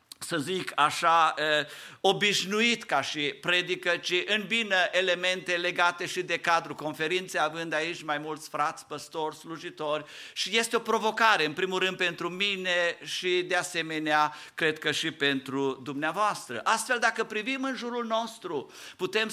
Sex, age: male, 50-69